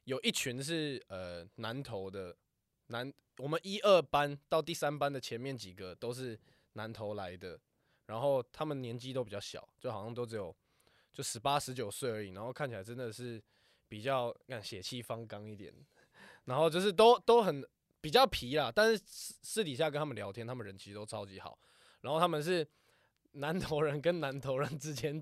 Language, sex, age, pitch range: Chinese, male, 20-39, 110-145 Hz